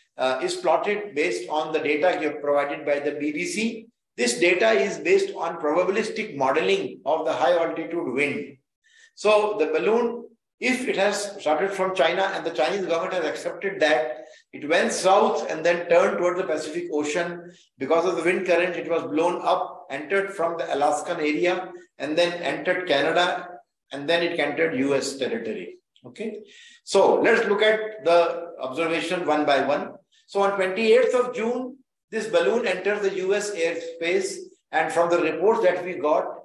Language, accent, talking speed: English, Indian, 165 wpm